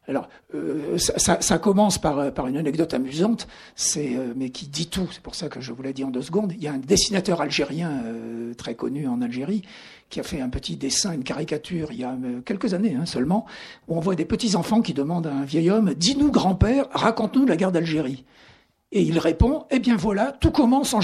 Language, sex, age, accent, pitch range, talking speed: French, male, 60-79, French, 150-215 Hz, 240 wpm